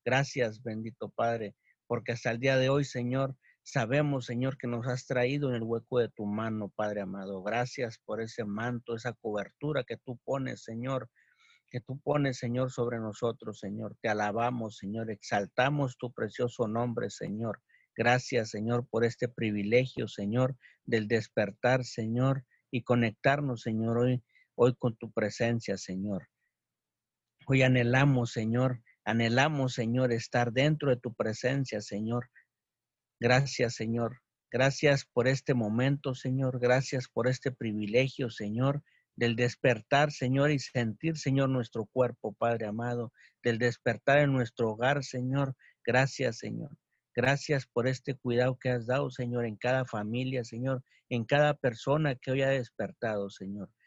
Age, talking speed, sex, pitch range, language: 50-69, 145 wpm, male, 115-130 Hz, Spanish